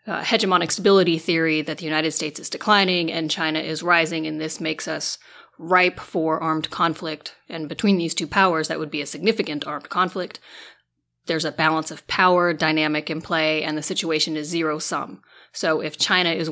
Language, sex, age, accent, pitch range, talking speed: English, female, 30-49, American, 155-185 Hz, 190 wpm